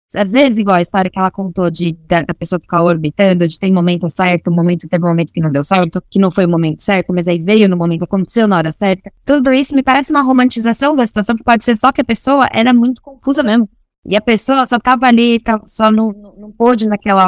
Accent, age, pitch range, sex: Brazilian, 10-29, 185-230 Hz, female